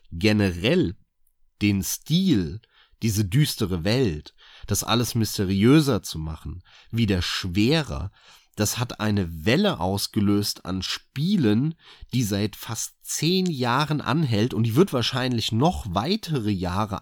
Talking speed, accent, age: 115 wpm, German, 30-49